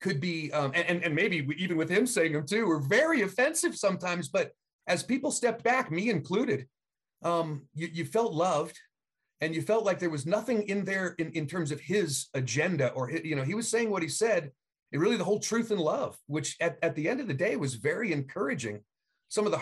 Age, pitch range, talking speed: 30-49, 140-185 Hz, 225 wpm